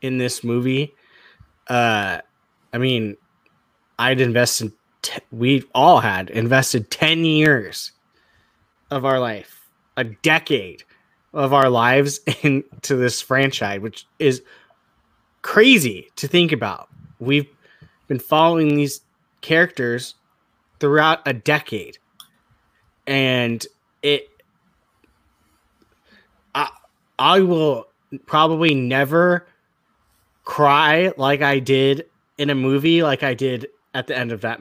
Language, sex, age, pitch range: English, male, 20-39, 135-165 Hz